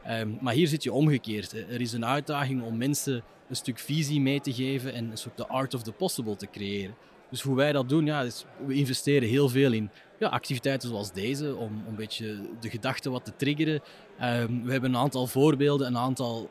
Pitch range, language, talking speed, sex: 115-140 Hz, Dutch, 220 wpm, male